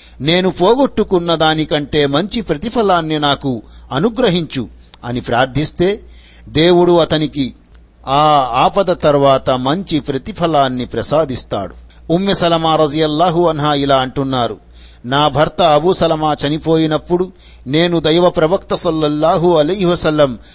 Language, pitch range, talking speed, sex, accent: Telugu, 130-170 Hz, 95 wpm, male, native